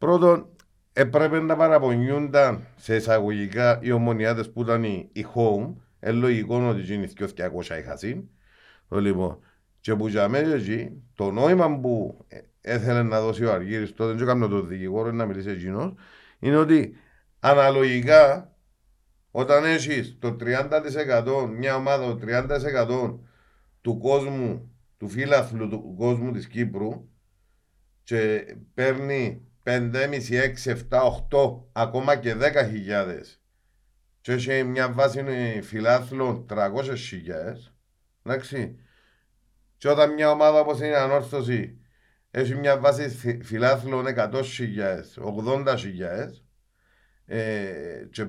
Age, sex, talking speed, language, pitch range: 50-69, male, 120 wpm, Greek, 105-135 Hz